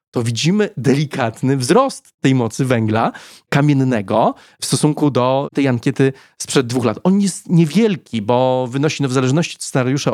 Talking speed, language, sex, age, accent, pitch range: 155 wpm, Polish, male, 30-49, native, 120-150 Hz